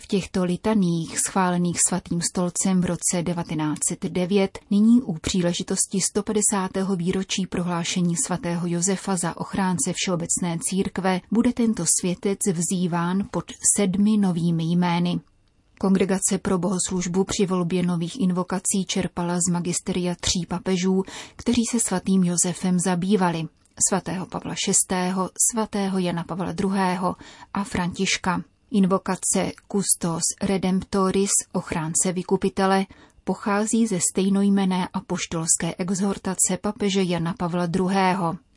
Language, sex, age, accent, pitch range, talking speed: Czech, female, 30-49, native, 175-195 Hz, 105 wpm